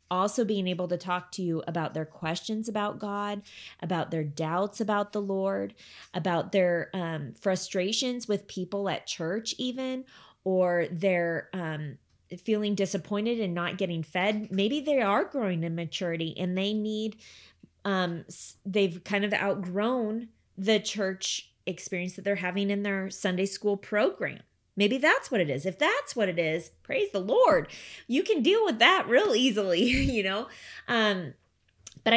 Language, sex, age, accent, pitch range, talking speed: English, female, 20-39, American, 175-215 Hz, 160 wpm